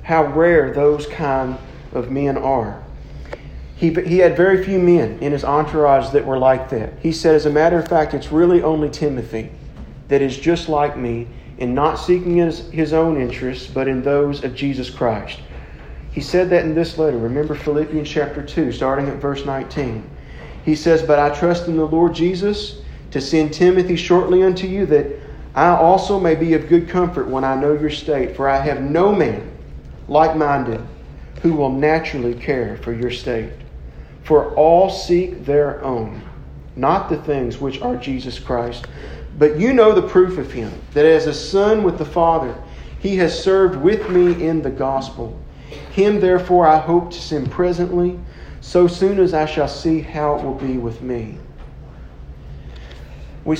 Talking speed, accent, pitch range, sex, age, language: 180 wpm, American, 130-170 Hz, male, 40-59, English